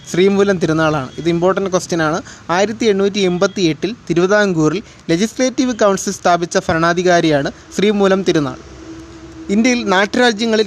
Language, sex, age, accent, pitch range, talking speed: Malayalam, male, 20-39, native, 160-200 Hz, 100 wpm